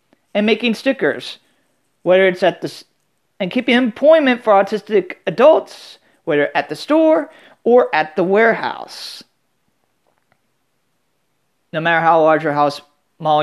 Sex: male